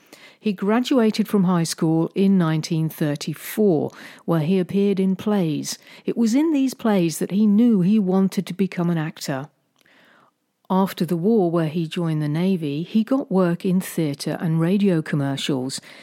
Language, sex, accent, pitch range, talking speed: English, female, British, 155-200 Hz, 155 wpm